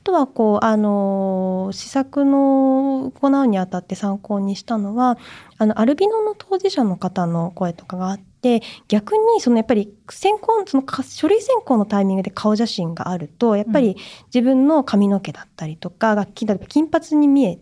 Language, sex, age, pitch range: Japanese, female, 20-39, 195-295 Hz